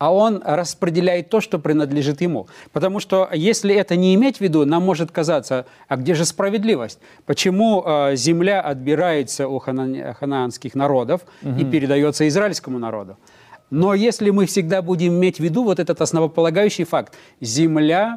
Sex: male